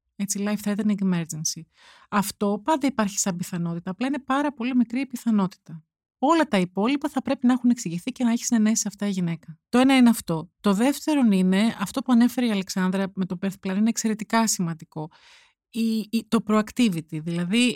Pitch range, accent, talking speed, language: 180-230 Hz, native, 180 wpm, Greek